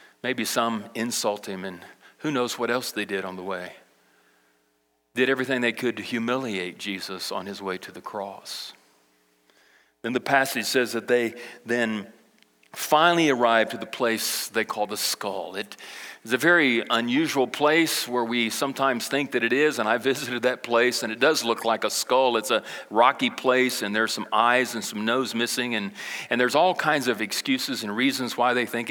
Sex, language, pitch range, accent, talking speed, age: male, English, 105-130 Hz, American, 190 wpm, 40-59